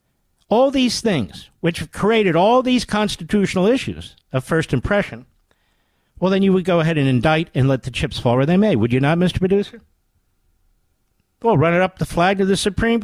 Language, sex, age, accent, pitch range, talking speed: English, male, 50-69, American, 115-190 Hz, 200 wpm